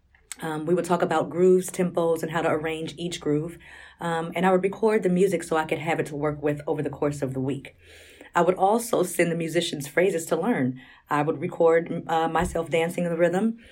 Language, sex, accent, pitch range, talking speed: English, female, American, 150-180 Hz, 230 wpm